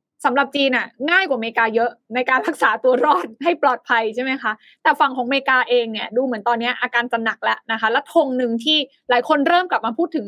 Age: 20-39